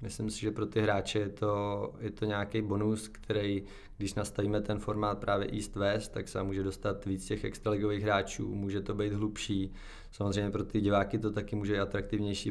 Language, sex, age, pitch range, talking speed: Czech, male, 20-39, 100-105 Hz, 190 wpm